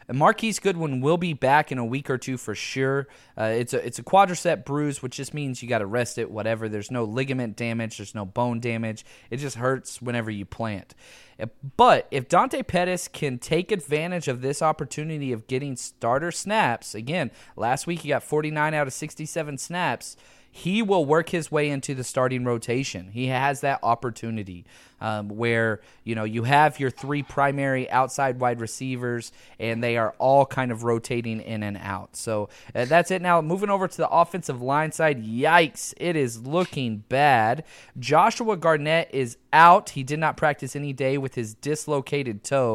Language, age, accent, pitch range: English, 30-49, American, 120-155 Hz